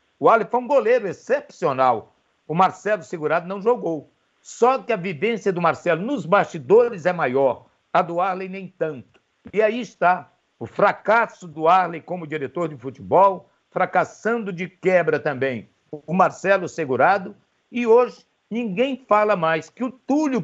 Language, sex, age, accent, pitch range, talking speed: Portuguese, male, 60-79, Brazilian, 170-215 Hz, 155 wpm